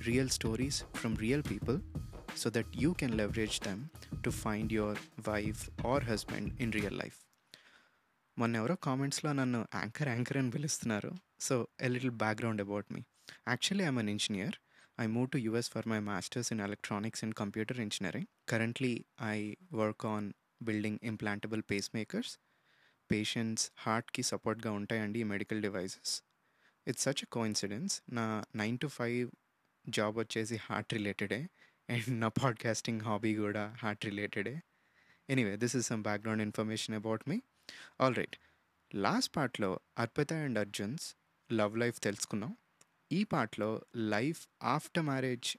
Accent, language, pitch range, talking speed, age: native, Telugu, 105-125 Hz, 140 wpm, 20-39